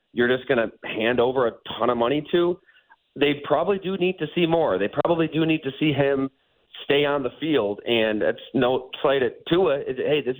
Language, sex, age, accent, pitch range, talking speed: English, male, 30-49, American, 120-170 Hz, 215 wpm